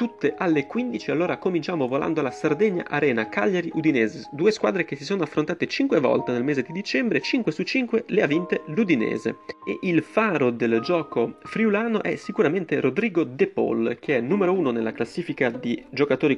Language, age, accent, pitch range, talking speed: Italian, 30-49, native, 135-210 Hz, 175 wpm